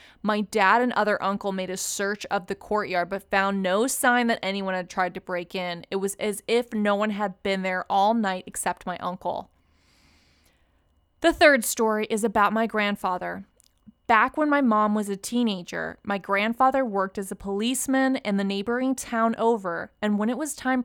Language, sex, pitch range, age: English, female, 190-245 Hz, 20-39